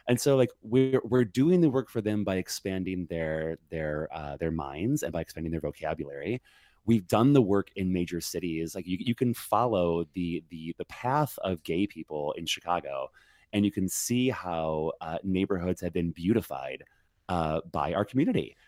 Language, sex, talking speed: English, male, 185 wpm